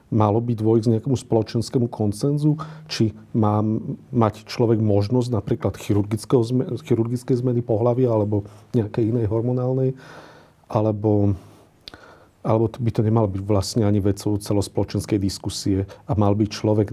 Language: Slovak